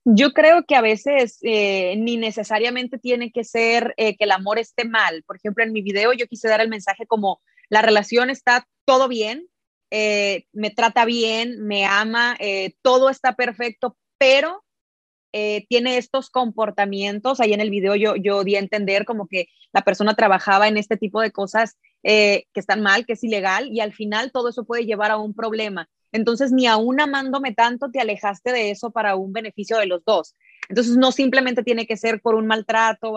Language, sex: Spanish, female